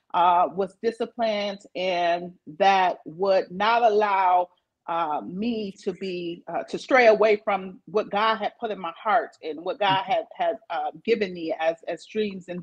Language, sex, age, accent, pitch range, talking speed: English, female, 40-59, American, 175-220 Hz, 170 wpm